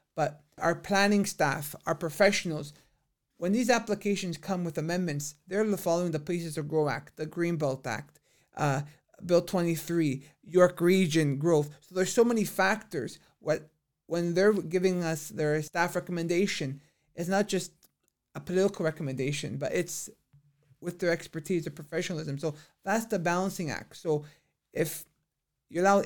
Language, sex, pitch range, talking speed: English, male, 155-185 Hz, 145 wpm